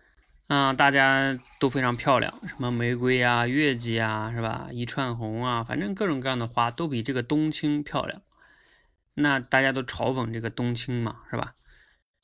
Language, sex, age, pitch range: Chinese, male, 20-39, 110-150 Hz